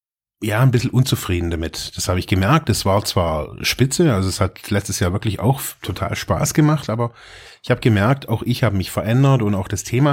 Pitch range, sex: 100-125 Hz, male